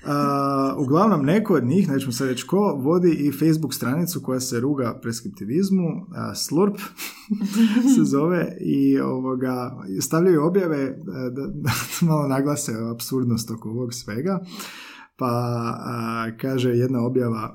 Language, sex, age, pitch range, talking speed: Croatian, male, 20-39, 120-175 Hz, 130 wpm